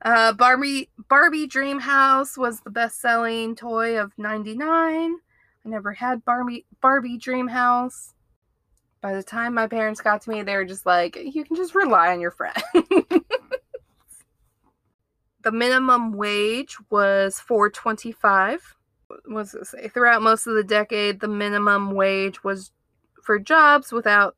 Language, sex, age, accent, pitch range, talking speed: English, female, 20-39, American, 205-265 Hz, 130 wpm